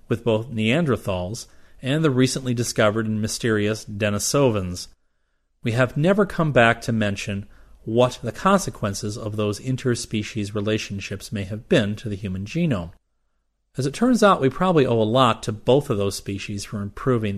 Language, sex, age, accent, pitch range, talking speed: English, male, 40-59, American, 100-130 Hz, 160 wpm